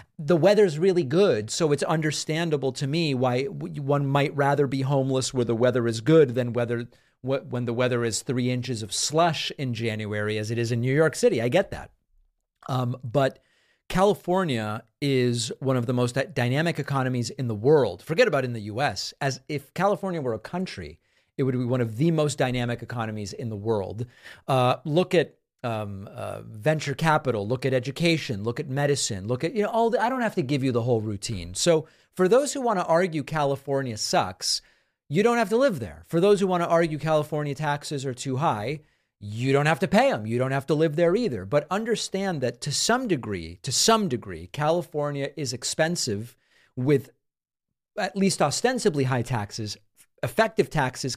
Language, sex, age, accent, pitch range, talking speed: English, male, 40-59, American, 120-165 Hz, 190 wpm